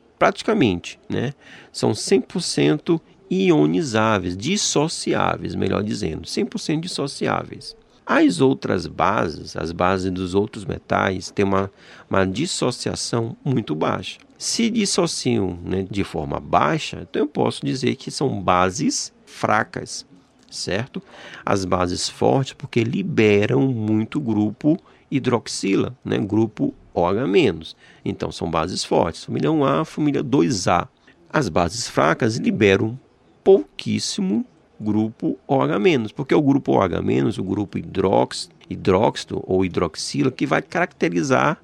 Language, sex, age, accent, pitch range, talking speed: Portuguese, male, 40-59, Brazilian, 95-135 Hz, 115 wpm